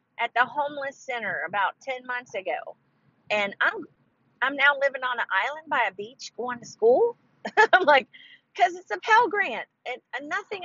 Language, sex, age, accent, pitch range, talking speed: English, female, 40-59, American, 190-280 Hz, 185 wpm